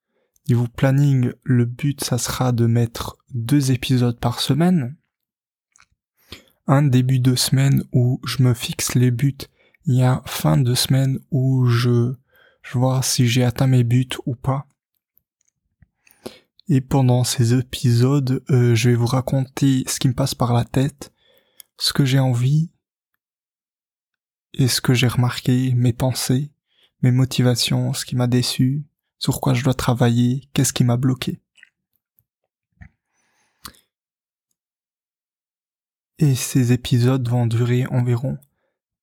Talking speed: 135 wpm